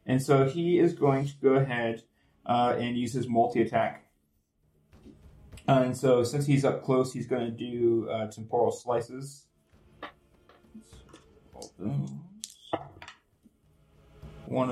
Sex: male